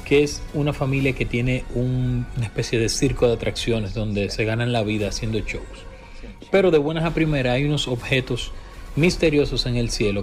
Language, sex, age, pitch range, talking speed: Spanish, male, 30-49, 105-150 Hz, 190 wpm